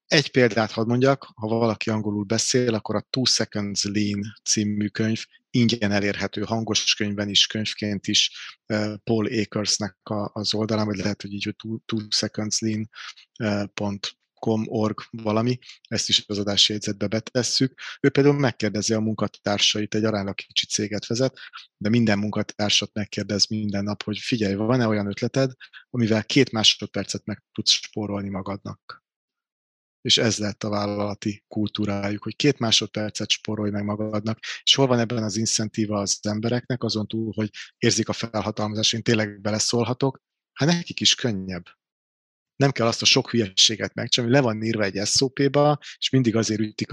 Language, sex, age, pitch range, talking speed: Hungarian, male, 30-49, 105-115 Hz, 155 wpm